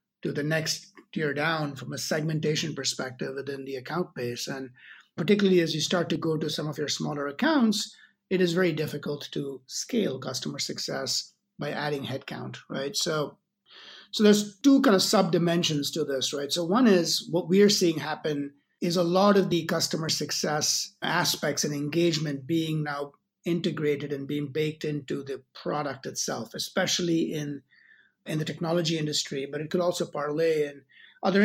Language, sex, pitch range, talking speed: English, male, 145-180 Hz, 170 wpm